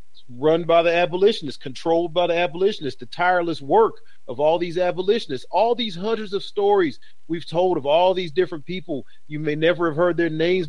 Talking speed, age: 190 wpm, 40-59